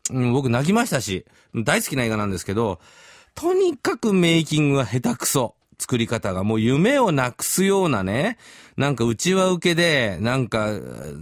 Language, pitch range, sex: Japanese, 115-180 Hz, male